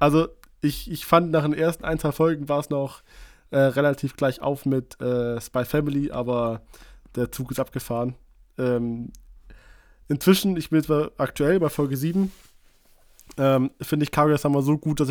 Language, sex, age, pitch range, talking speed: German, male, 20-39, 125-155 Hz, 165 wpm